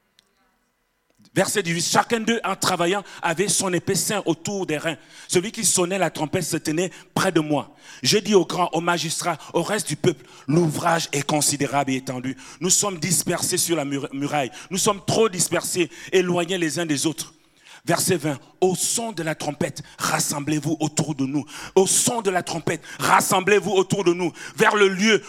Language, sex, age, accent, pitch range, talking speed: French, male, 40-59, French, 135-190 Hz, 185 wpm